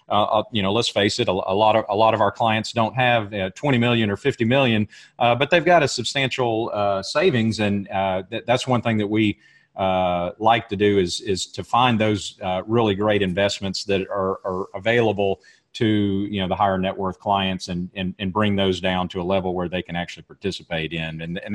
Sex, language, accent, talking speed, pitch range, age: male, English, American, 235 wpm, 95-120 Hz, 40-59